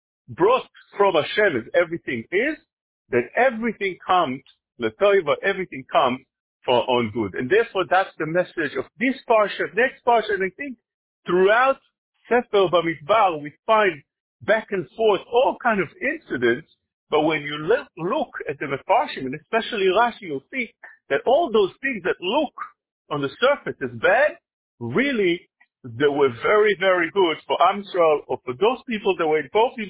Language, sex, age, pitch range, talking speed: English, male, 50-69, 140-230 Hz, 160 wpm